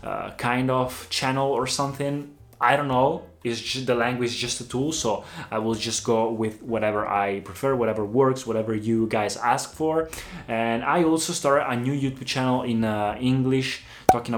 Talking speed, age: 185 wpm, 20-39